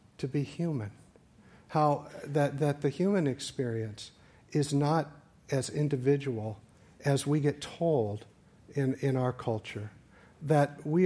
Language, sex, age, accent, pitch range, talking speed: English, male, 50-69, American, 125-165 Hz, 125 wpm